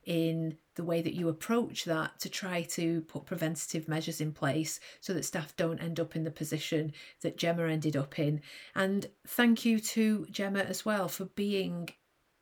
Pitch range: 165-210 Hz